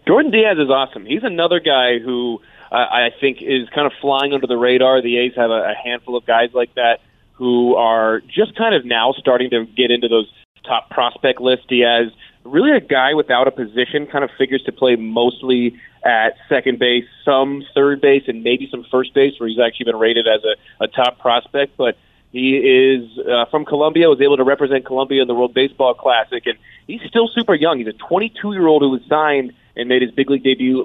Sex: male